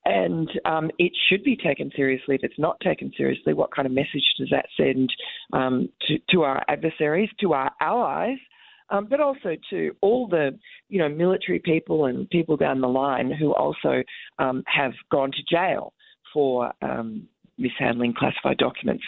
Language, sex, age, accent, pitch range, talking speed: English, female, 40-59, Australian, 135-175 Hz, 170 wpm